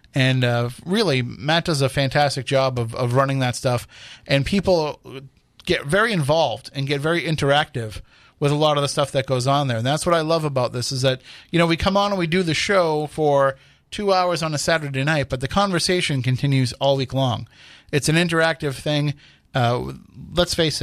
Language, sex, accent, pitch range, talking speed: English, male, American, 125-155 Hz, 205 wpm